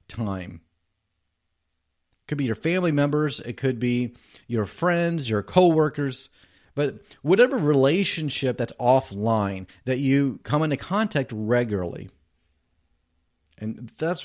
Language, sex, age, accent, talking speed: English, male, 40-59, American, 115 wpm